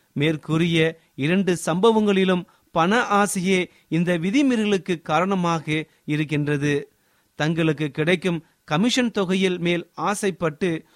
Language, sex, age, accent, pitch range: Tamil, male, 30-49, native, 155-200 Hz